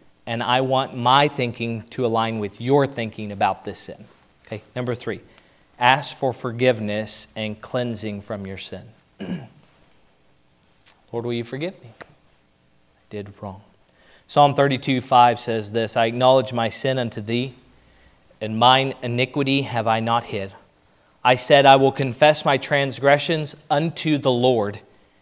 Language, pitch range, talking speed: English, 110-140 Hz, 145 wpm